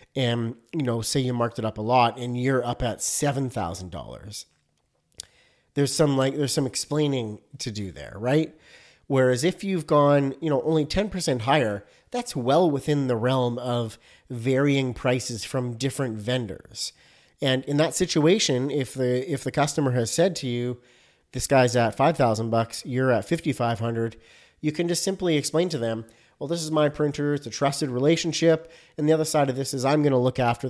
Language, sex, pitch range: English, male, 120-155 Hz